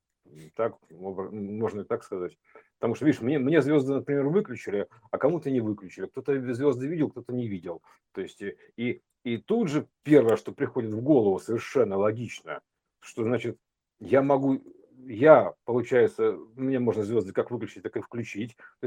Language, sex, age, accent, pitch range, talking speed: Russian, male, 50-69, native, 120-170 Hz, 160 wpm